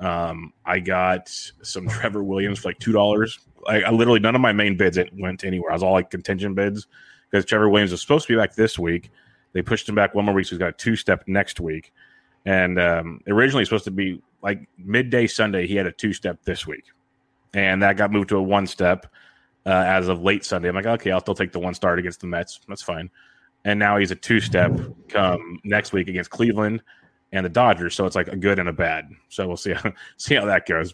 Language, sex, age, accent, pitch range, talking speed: English, male, 30-49, American, 90-105 Hz, 235 wpm